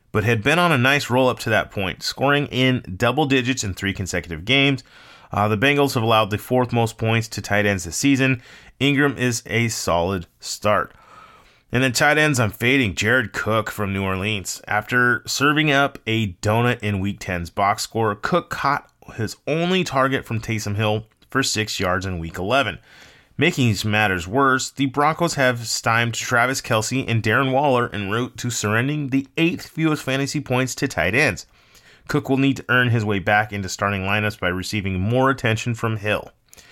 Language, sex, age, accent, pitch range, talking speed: English, male, 30-49, American, 105-135 Hz, 190 wpm